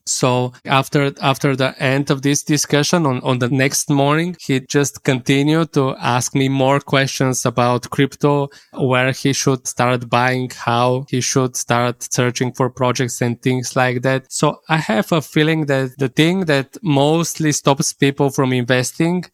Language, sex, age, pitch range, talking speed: English, male, 20-39, 125-145 Hz, 165 wpm